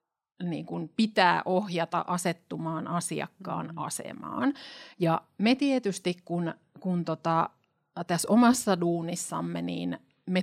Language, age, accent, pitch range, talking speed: Finnish, 30-49, native, 165-200 Hz, 75 wpm